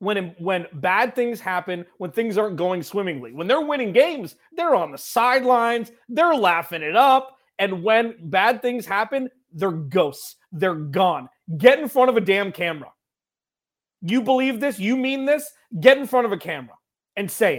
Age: 30-49